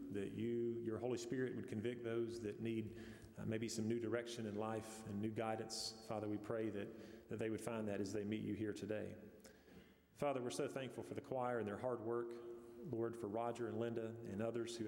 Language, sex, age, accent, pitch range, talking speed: English, male, 40-59, American, 110-120 Hz, 220 wpm